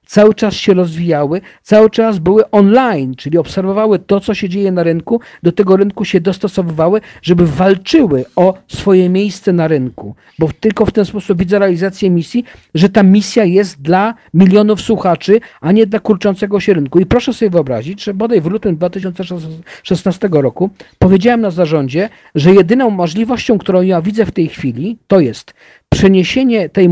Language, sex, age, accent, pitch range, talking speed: Polish, male, 50-69, native, 175-220 Hz, 165 wpm